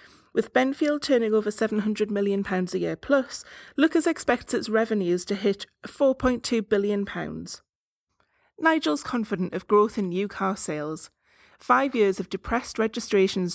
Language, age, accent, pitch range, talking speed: English, 30-49, British, 185-240 Hz, 135 wpm